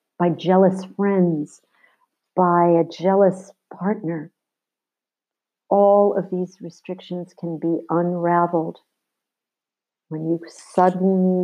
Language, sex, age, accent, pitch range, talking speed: English, female, 50-69, American, 155-180 Hz, 90 wpm